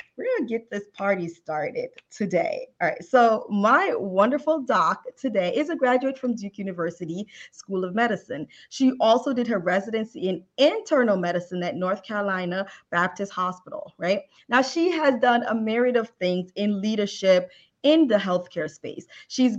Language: English